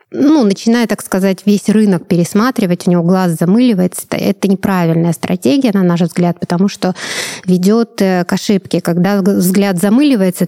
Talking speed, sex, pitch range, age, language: 145 wpm, female, 175-200 Hz, 20-39, Russian